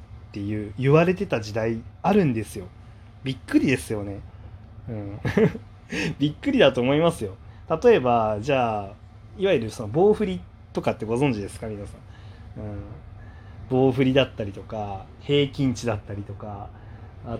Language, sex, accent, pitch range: Japanese, male, native, 105-135 Hz